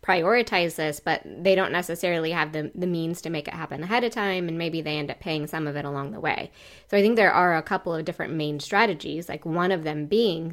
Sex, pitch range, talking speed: female, 150-180 Hz, 255 wpm